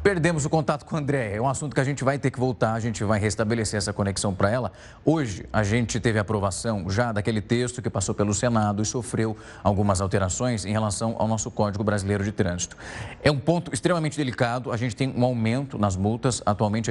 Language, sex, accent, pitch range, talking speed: Portuguese, male, Brazilian, 105-135 Hz, 215 wpm